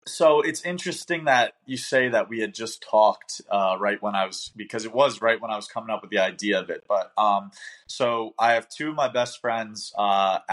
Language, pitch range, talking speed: English, 105-120 Hz, 235 wpm